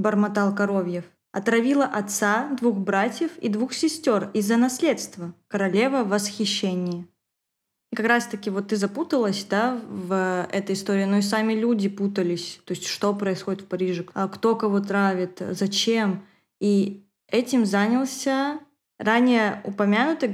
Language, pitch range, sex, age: Russian, 195-220 Hz, female, 20-39